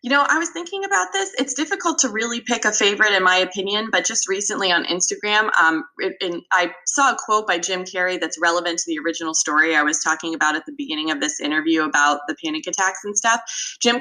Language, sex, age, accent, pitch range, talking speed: English, female, 20-39, American, 160-210 Hz, 235 wpm